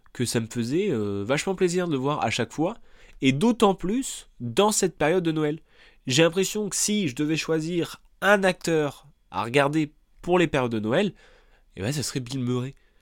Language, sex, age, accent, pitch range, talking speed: French, male, 20-39, French, 110-155 Hz, 205 wpm